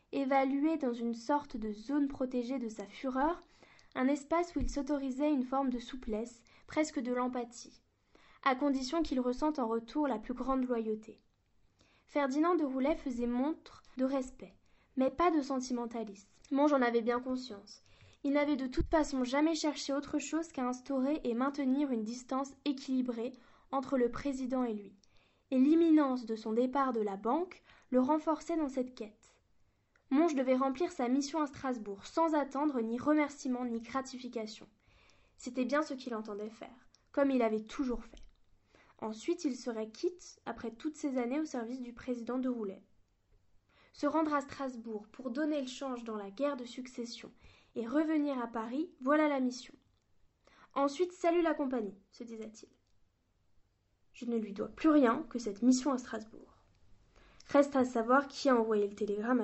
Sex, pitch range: female, 230-290 Hz